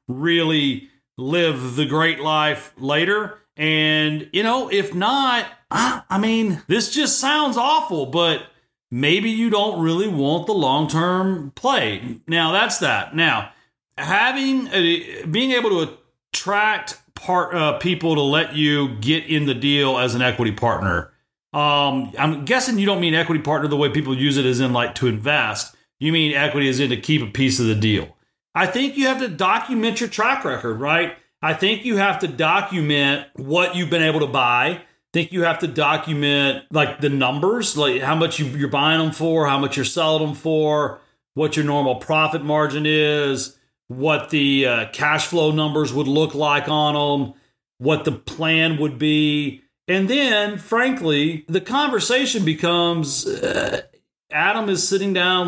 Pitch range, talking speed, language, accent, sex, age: 145-185 Hz, 170 wpm, English, American, male, 40-59